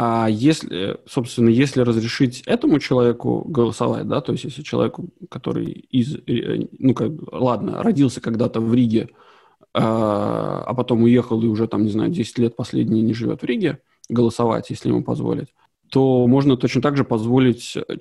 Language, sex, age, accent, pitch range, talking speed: Russian, male, 20-39, native, 115-130 Hz, 155 wpm